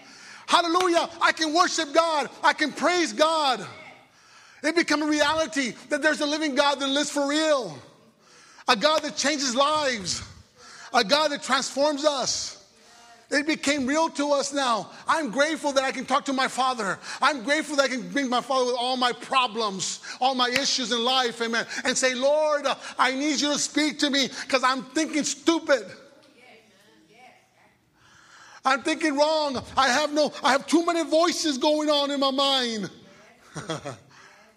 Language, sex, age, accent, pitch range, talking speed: English, male, 30-49, American, 245-300 Hz, 165 wpm